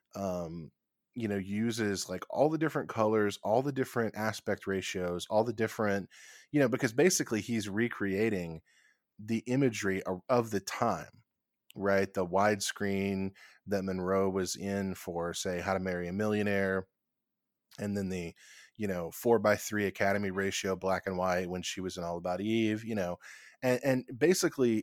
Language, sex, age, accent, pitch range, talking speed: English, male, 20-39, American, 95-110 Hz, 160 wpm